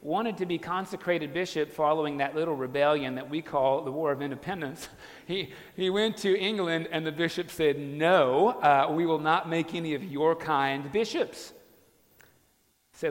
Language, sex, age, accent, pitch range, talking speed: English, male, 40-59, American, 145-185 Hz, 170 wpm